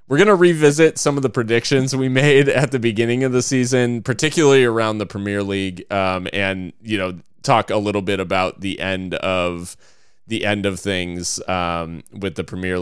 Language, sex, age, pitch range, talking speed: English, male, 20-39, 95-125 Hz, 185 wpm